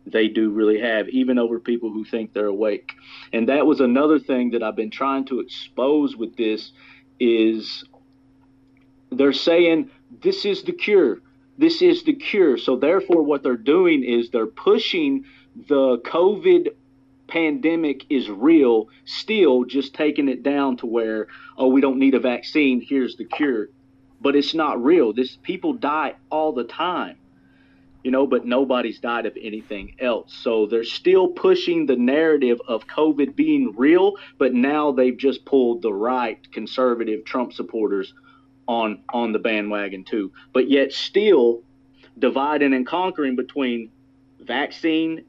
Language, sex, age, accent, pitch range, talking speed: English, male, 40-59, American, 120-150 Hz, 150 wpm